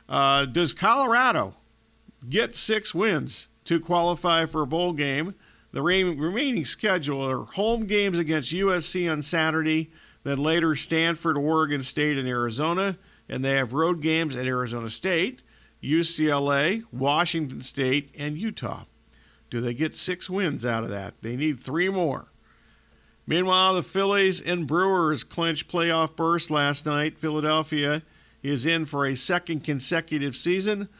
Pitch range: 140-175 Hz